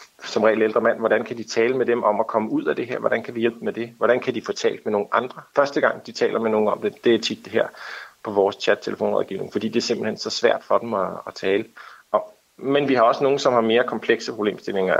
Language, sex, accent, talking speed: Danish, male, native, 275 wpm